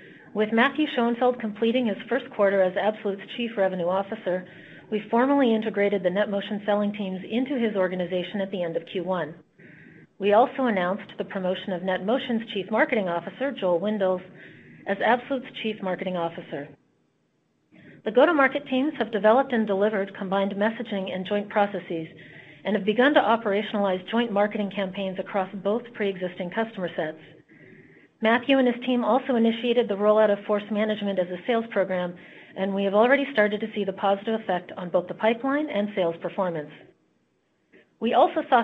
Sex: female